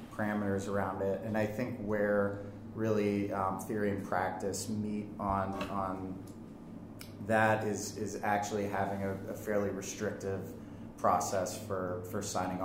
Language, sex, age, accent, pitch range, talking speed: English, male, 30-49, American, 90-105 Hz, 135 wpm